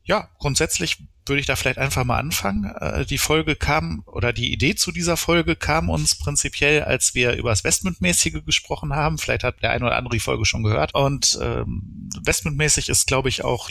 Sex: male